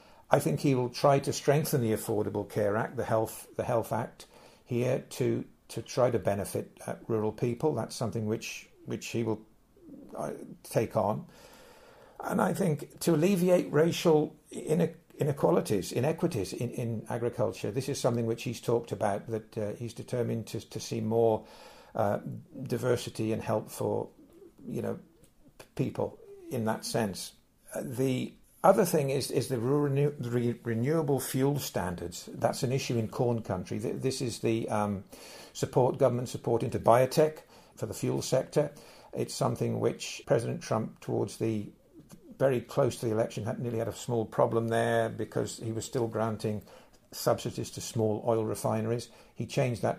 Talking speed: 160 wpm